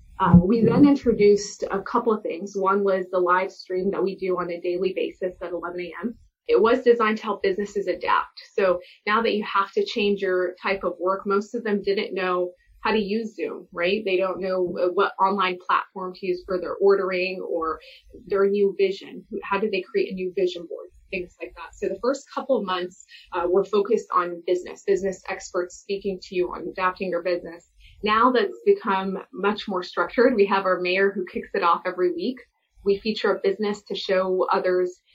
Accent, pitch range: American, 180-210 Hz